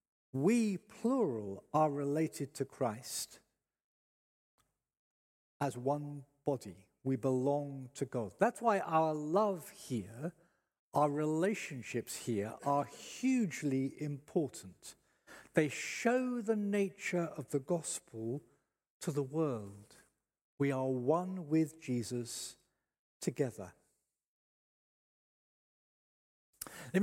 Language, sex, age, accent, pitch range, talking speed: English, male, 50-69, British, 130-180 Hz, 90 wpm